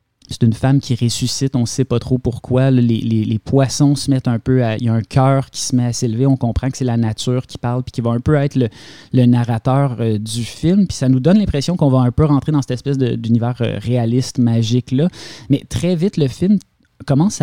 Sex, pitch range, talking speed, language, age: male, 115-140 Hz, 260 wpm, French, 20-39